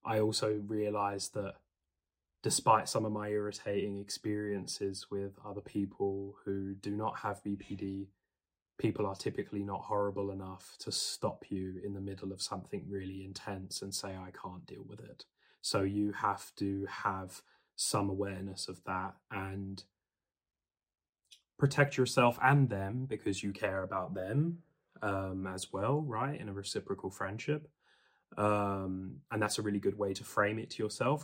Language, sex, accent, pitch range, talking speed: English, male, British, 95-110 Hz, 155 wpm